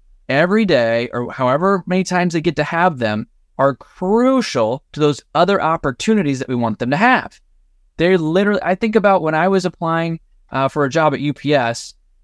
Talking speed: 185 wpm